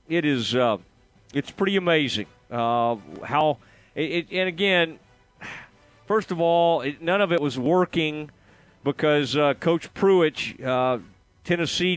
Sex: male